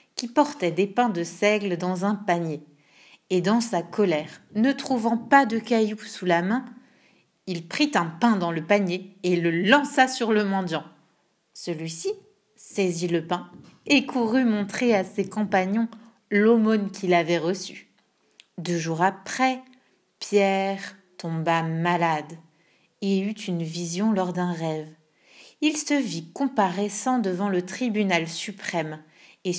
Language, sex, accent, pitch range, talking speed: French, female, French, 180-230 Hz, 140 wpm